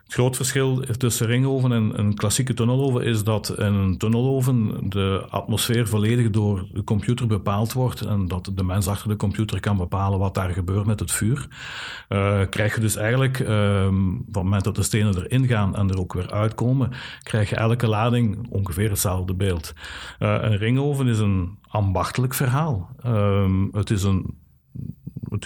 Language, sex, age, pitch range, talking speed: Dutch, male, 50-69, 95-120 Hz, 170 wpm